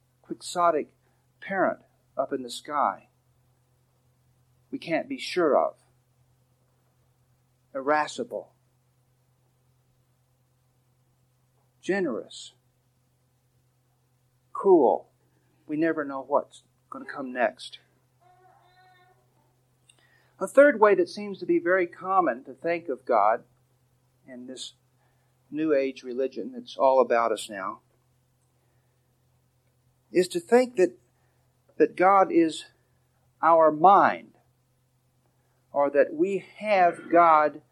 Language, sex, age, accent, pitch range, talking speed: English, male, 50-69, American, 125-150 Hz, 95 wpm